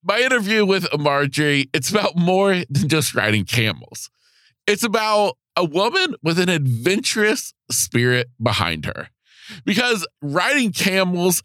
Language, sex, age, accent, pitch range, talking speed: English, male, 50-69, American, 125-195 Hz, 125 wpm